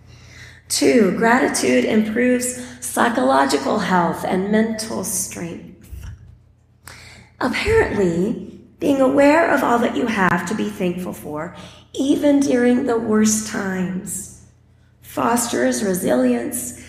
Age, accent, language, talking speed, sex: 30-49, American, English, 95 wpm, female